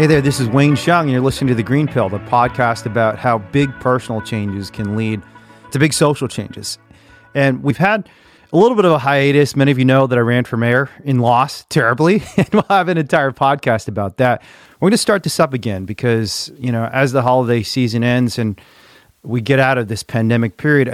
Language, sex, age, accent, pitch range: Japanese, male, 30-49, American, 115-150 Hz